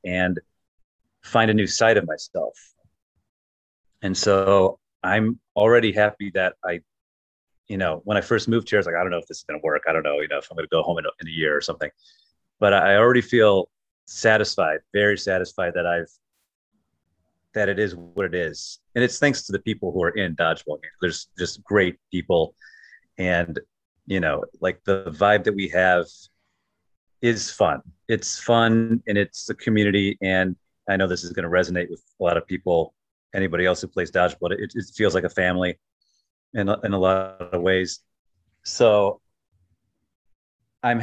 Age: 30-49